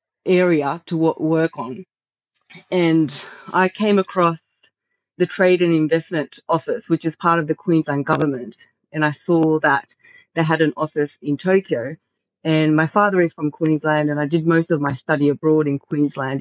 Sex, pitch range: female, 145-170 Hz